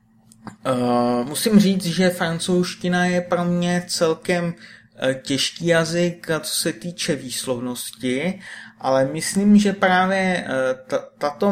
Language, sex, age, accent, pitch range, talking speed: Czech, male, 30-49, native, 130-175 Hz, 105 wpm